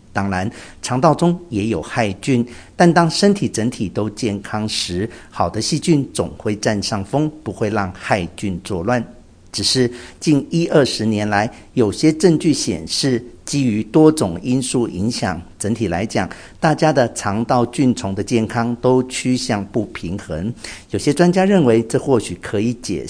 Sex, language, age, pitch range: male, Chinese, 50-69, 100-135 Hz